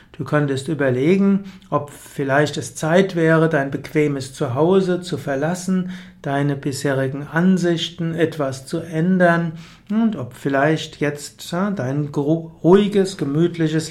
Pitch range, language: 140-180 Hz, German